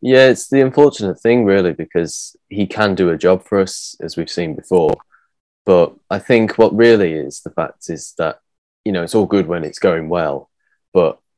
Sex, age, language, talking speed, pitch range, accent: male, 20-39, English, 200 wpm, 80-110 Hz, British